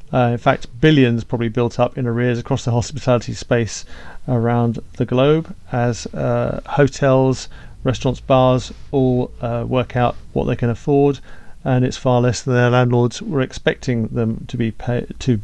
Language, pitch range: English, 115-130 Hz